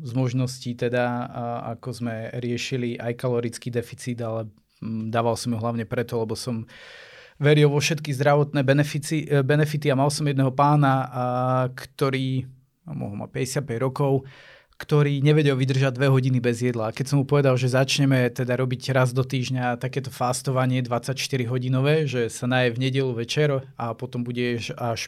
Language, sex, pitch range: Slovak, male, 120-135 Hz